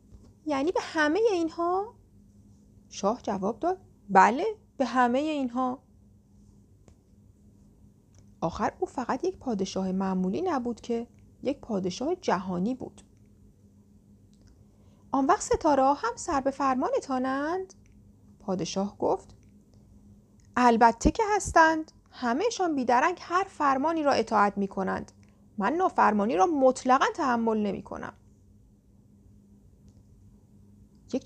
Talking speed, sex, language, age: 100 wpm, female, Persian, 40-59